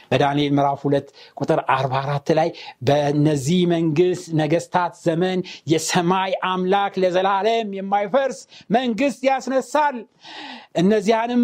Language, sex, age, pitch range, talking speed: Amharic, male, 60-79, 170-230 Hz, 90 wpm